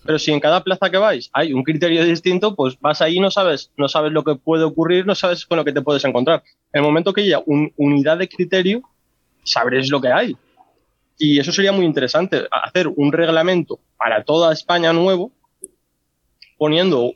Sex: male